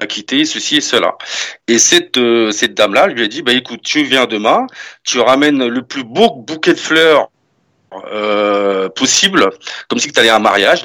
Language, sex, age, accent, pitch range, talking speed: French, male, 40-59, French, 105-140 Hz, 190 wpm